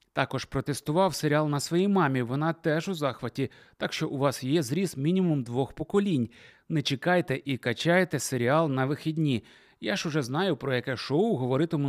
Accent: native